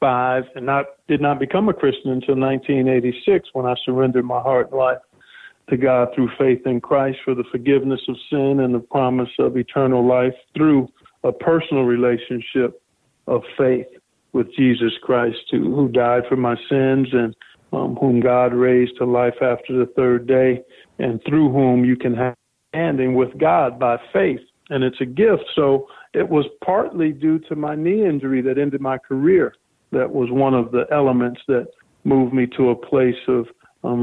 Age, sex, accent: 50-69, male, American